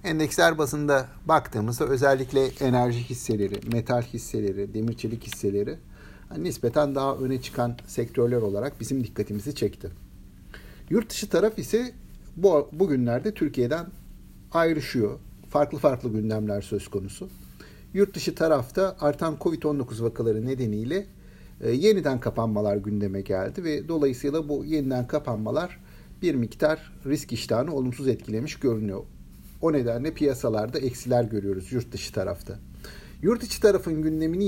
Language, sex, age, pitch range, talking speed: Turkish, male, 60-79, 105-150 Hz, 120 wpm